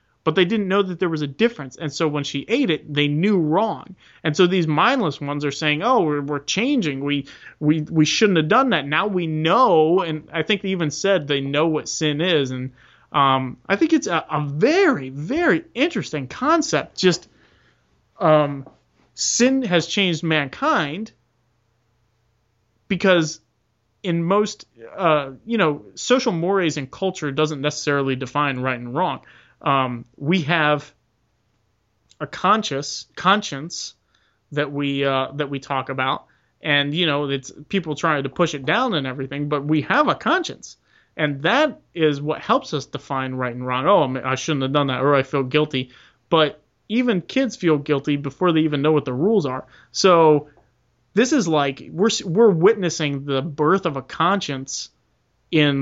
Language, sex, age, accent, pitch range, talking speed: English, male, 30-49, American, 135-180 Hz, 170 wpm